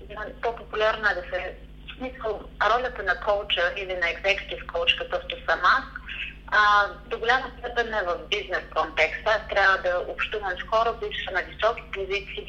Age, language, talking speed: 30-49, Bulgarian, 165 wpm